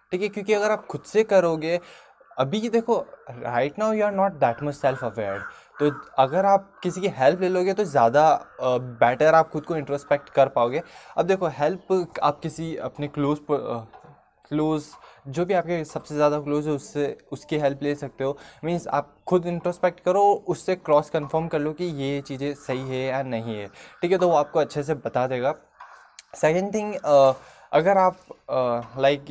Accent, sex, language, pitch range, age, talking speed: native, male, Hindi, 140-185 Hz, 20-39, 185 wpm